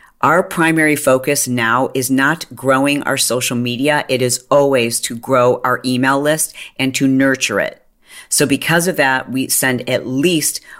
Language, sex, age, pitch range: English, female, 40-59, 130-175 Hz